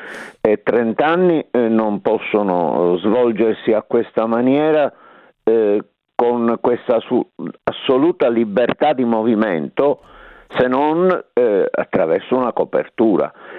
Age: 50-69